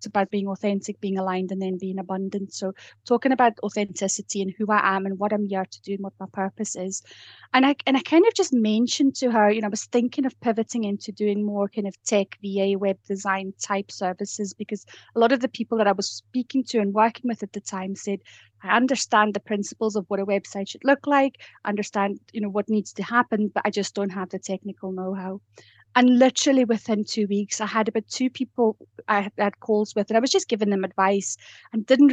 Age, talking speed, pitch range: 30-49, 230 wpm, 200-225 Hz